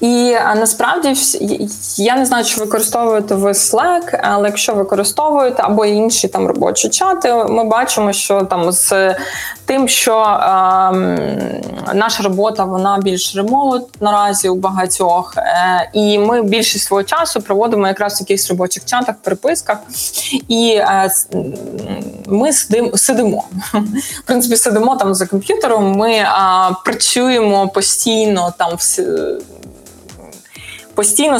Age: 20-39